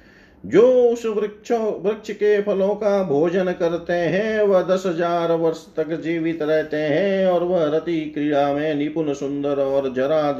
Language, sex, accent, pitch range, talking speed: Hindi, male, native, 125-150 Hz, 155 wpm